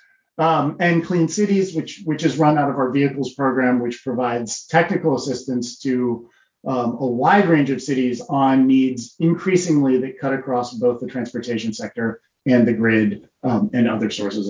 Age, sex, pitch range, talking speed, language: 30-49, male, 125-170 Hz, 170 wpm, English